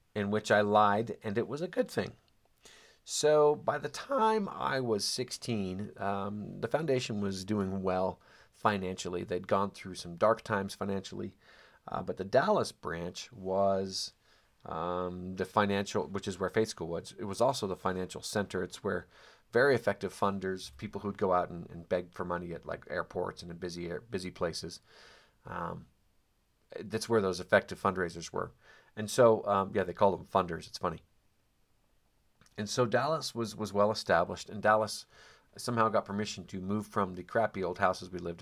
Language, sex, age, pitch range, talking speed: English, male, 40-59, 90-110 Hz, 175 wpm